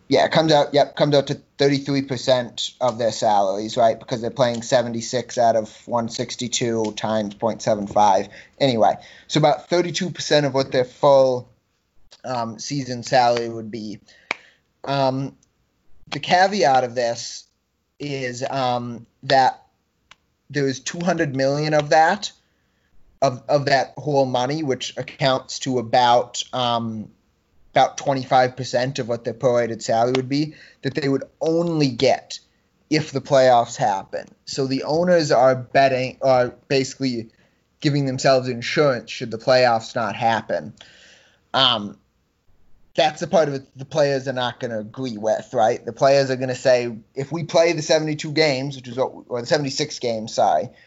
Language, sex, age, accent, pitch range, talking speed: English, male, 20-39, American, 120-140 Hz, 150 wpm